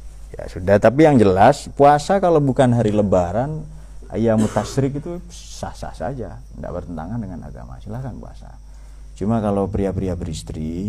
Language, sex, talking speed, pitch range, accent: Indonesian, male, 145 wpm, 80-120 Hz, native